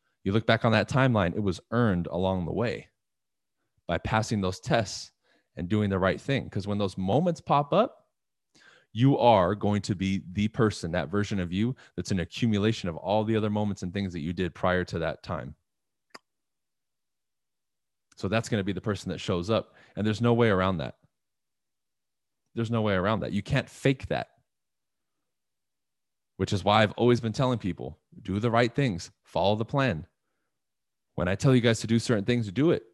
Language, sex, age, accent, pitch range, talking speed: English, male, 20-39, American, 95-115 Hz, 195 wpm